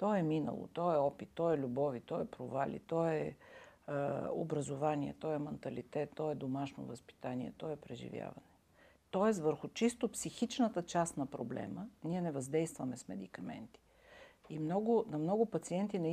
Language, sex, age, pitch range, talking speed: Bulgarian, female, 50-69, 140-190 Hz, 165 wpm